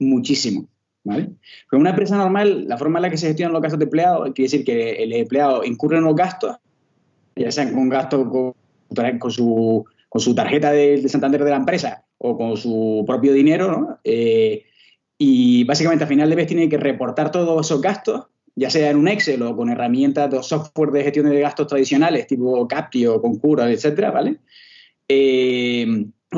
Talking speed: 185 wpm